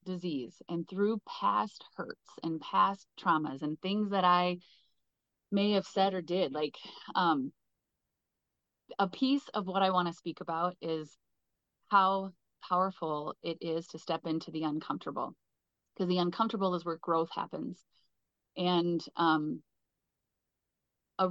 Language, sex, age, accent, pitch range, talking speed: English, female, 30-49, American, 170-200 Hz, 135 wpm